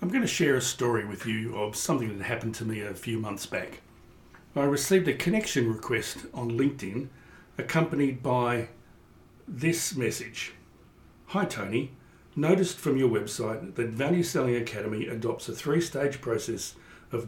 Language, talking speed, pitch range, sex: English, 155 wpm, 110-135 Hz, male